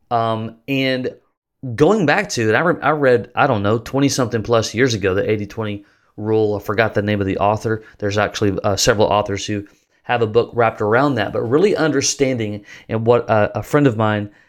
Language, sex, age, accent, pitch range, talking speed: English, male, 30-49, American, 110-140 Hz, 195 wpm